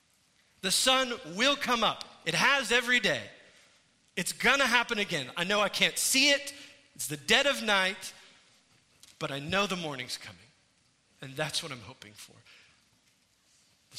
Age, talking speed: 40-59, 160 wpm